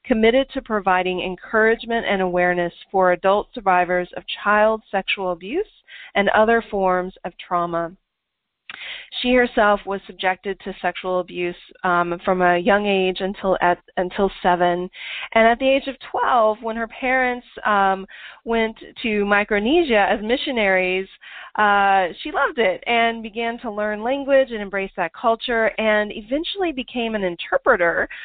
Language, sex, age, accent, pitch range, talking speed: English, female, 30-49, American, 185-225 Hz, 140 wpm